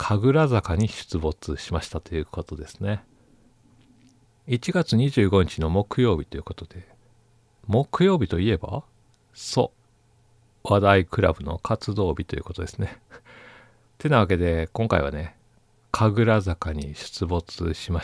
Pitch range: 85-115 Hz